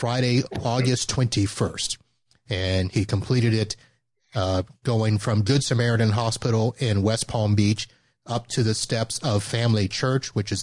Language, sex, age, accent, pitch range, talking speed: English, male, 30-49, American, 105-125 Hz, 145 wpm